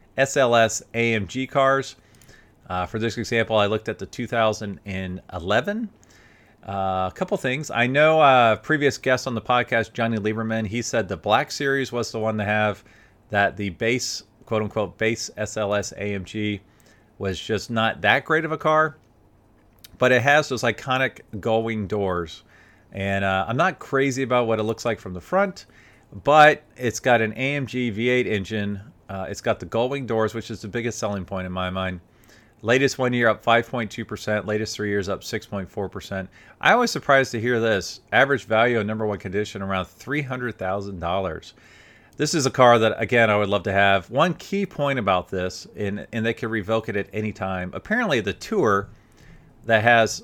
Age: 40-59